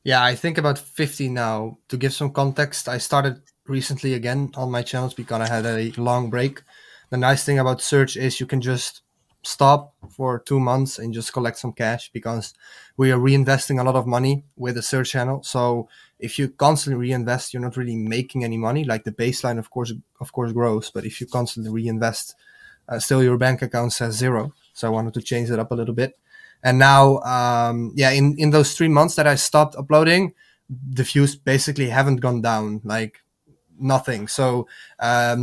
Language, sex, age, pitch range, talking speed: English, male, 20-39, 120-140 Hz, 200 wpm